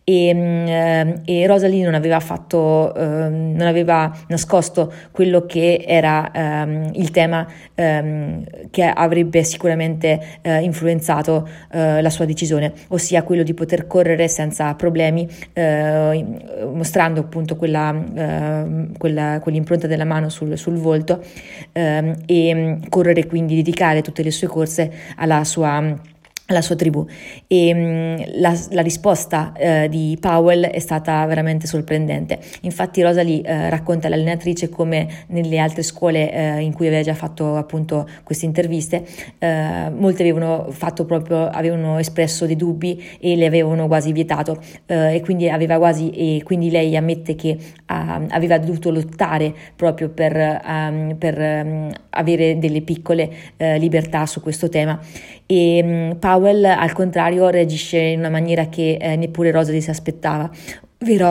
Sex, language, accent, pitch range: female, Italian, native, 155-170 Hz